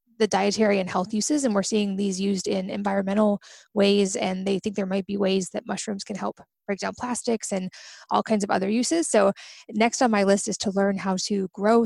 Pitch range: 195-225 Hz